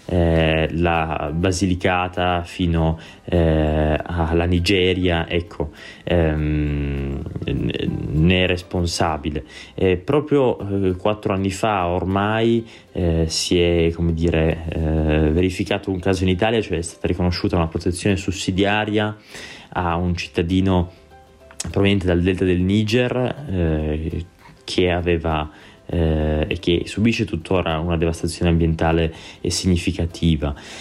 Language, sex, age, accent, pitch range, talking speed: Italian, male, 20-39, native, 85-100 Hz, 115 wpm